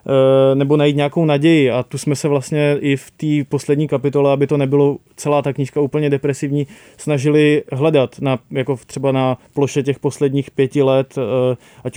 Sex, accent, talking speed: male, native, 170 wpm